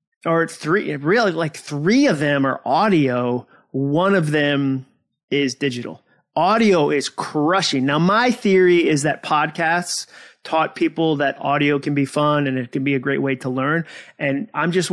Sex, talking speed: male, 170 wpm